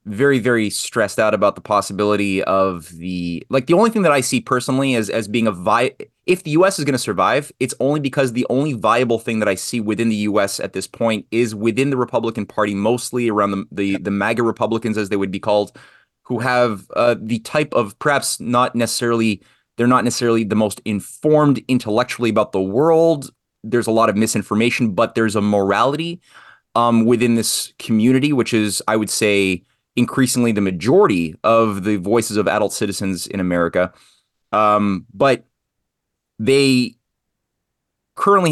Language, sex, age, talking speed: English, male, 30-49, 180 wpm